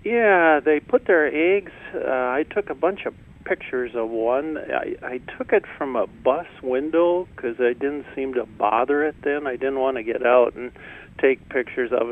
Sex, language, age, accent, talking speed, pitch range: male, English, 50-69, American, 200 wpm, 120-155 Hz